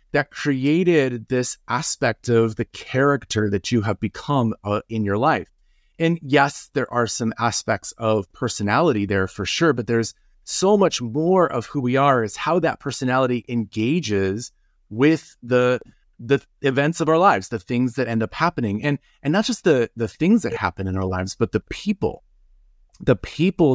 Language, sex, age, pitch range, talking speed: English, male, 30-49, 110-145 Hz, 175 wpm